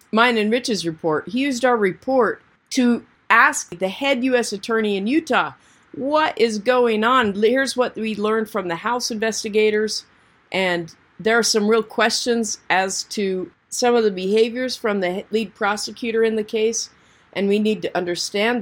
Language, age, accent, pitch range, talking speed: English, 50-69, American, 180-230 Hz, 170 wpm